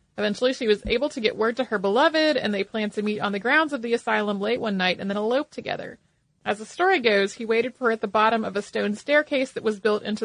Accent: American